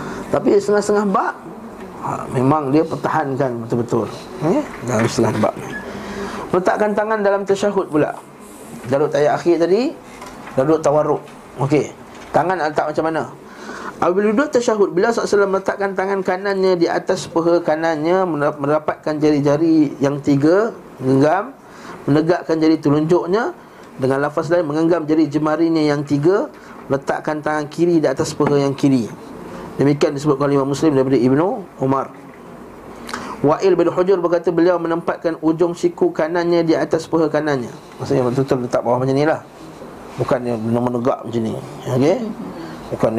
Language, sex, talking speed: Malay, male, 135 wpm